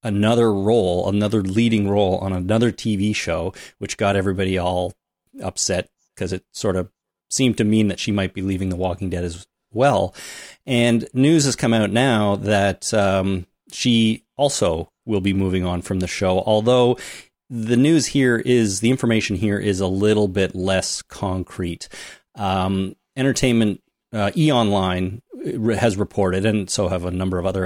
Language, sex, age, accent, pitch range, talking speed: English, male, 30-49, American, 95-115 Hz, 165 wpm